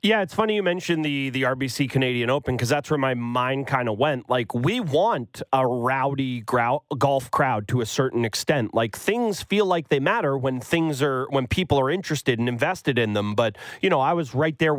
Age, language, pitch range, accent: 30-49, English, 130-175 Hz, American